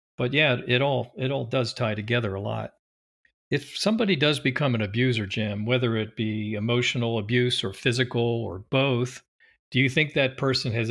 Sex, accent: male, American